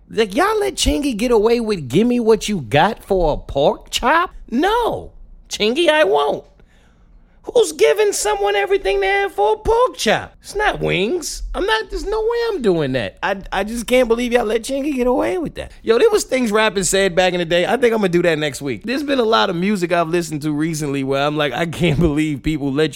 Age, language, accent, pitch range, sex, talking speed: 30-49, English, American, 150-245 Hz, male, 235 wpm